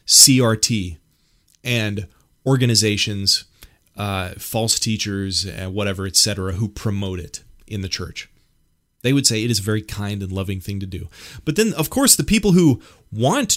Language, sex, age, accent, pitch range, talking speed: English, male, 30-49, American, 95-130 Hz, 160 wpm